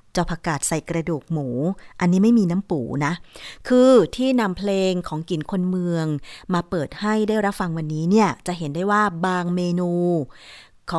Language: Thai